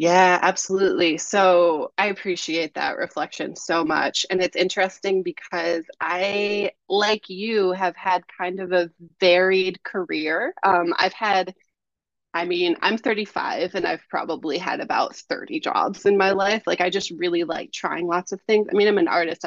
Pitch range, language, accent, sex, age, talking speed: 175-210 Hz, English, American, female, 20-39, 165 wpm